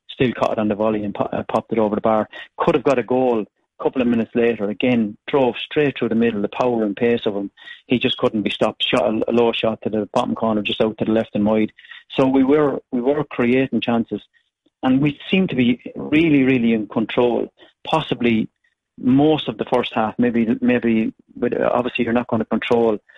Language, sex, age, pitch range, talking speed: English, male, 40-59, 110-120 Hz, 220 wpm